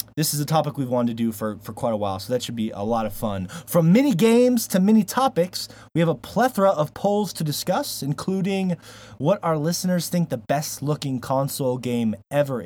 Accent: American